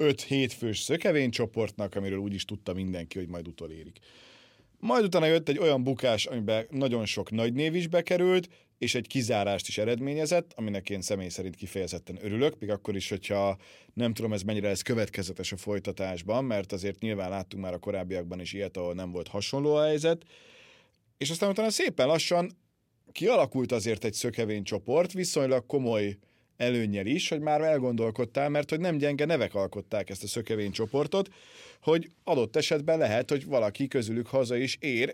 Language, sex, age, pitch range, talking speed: Hungarian, male, 30-49, 105-145 Hz, 160 wpm